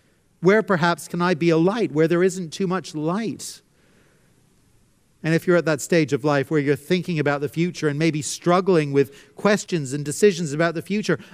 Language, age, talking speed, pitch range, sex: English, 50-69, 195 wpm, 155-200 Hz, male